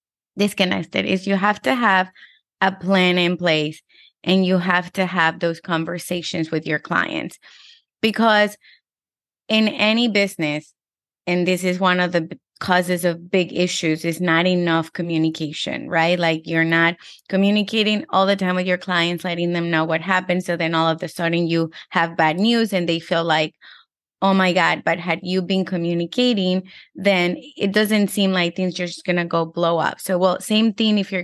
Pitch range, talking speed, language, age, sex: 175-205 Hz, 180 wpm, English, 20-39, female